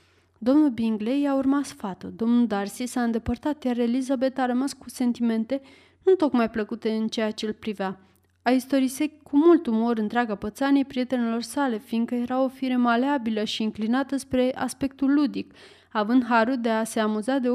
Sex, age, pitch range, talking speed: female, 20-39, 225-270 Hz, 170 wpm